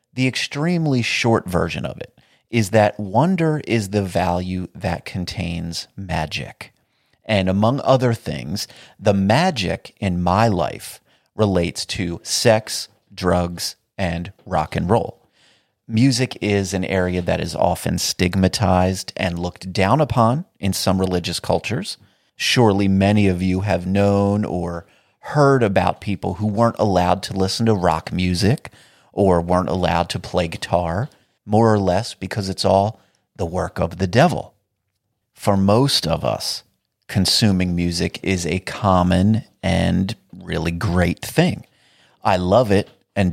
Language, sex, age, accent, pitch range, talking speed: English, male, 30-49, American, 90-110 Hz, 140 wpm